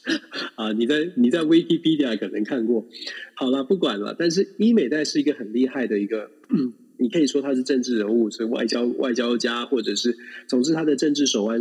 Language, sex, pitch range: Chinese, male, 115-185 Hz